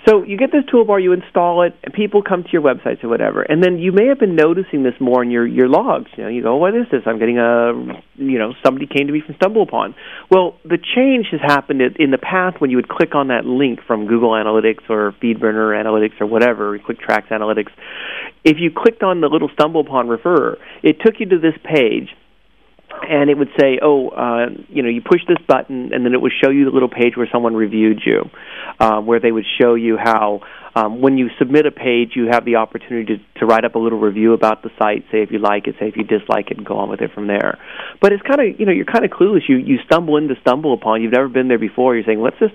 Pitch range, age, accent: 115-175 Hz, 40-59, American